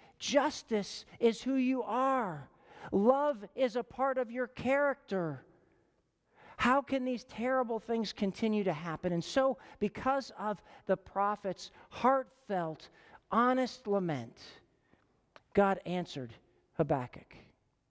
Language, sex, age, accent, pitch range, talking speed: English, male, 50-69, American, 190-240 Hz, 105 wpm